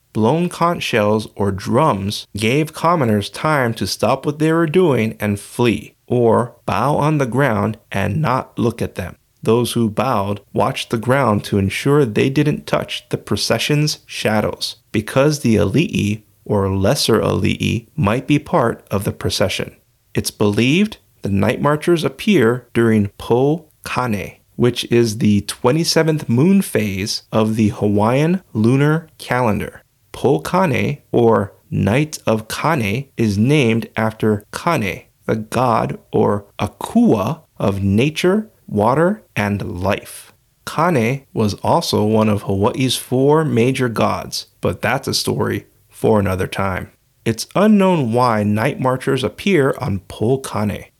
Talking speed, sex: 135 wpm, male